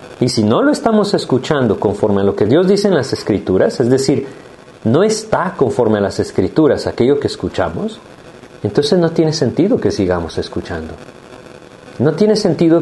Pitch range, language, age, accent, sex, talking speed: 110-170 Hz, Spanish, 40-59, Mexican, male, 170 wpm